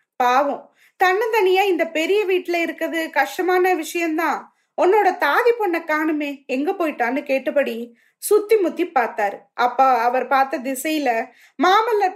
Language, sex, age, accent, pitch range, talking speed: Tamil, female, 20-39, native, 275-360 Hz, 115 wpm